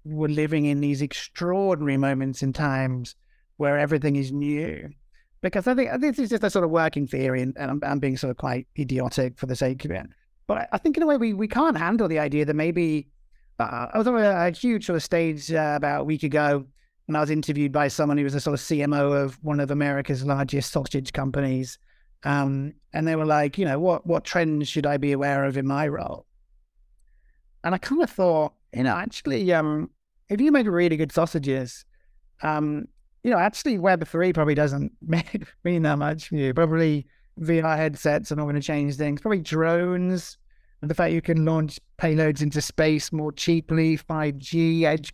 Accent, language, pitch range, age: British, English, 140-170 Hz, 30-49